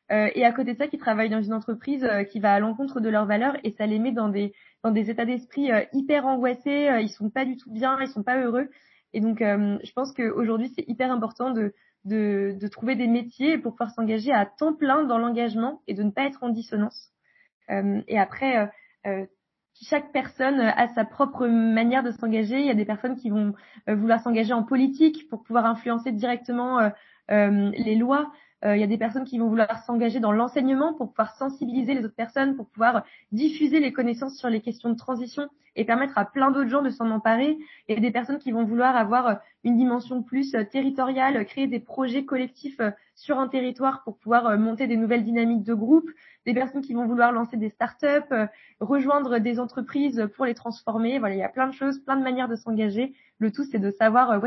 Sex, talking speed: female, 215 wpm